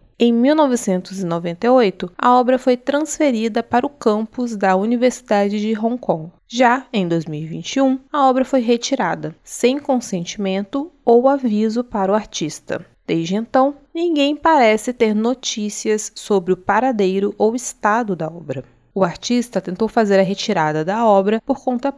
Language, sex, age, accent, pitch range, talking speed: Portuguese, female, 20-39, Brazilian, 190-250 Hz, 140 wpm